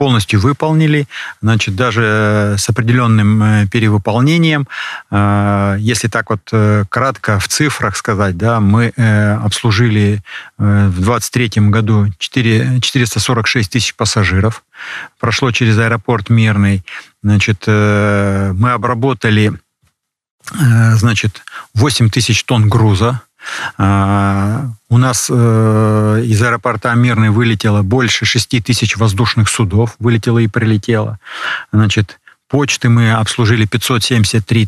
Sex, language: male, Russian